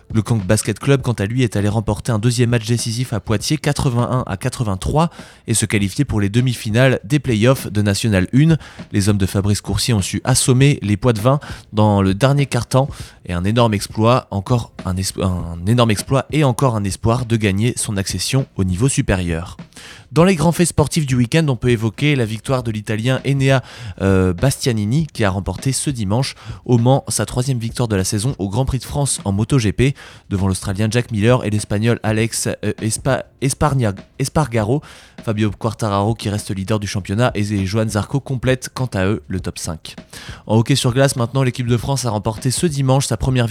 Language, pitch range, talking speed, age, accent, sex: French, 105-130 Hz, 200 wpm, 20-39, French, male